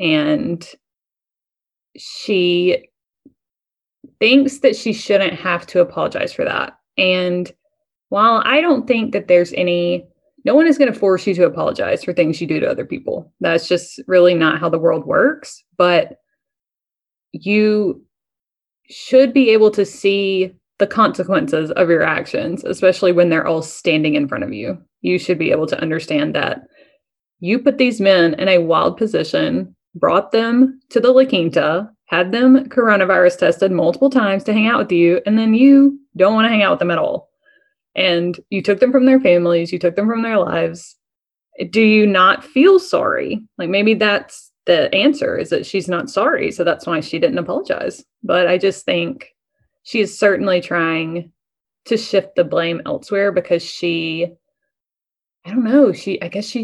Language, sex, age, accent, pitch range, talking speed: English, female, 20-39, American, 175-265 Hz, 175 wpm